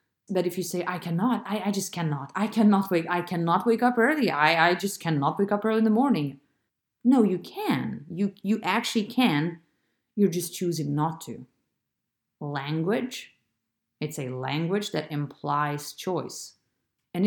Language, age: English, 30-49